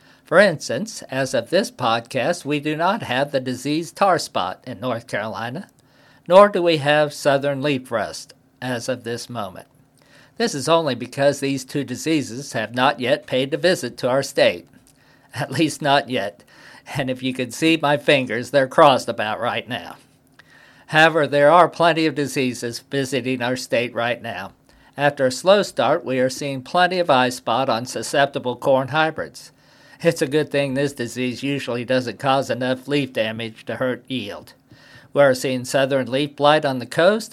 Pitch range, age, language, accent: 130-150 Hz, 50-69, English, American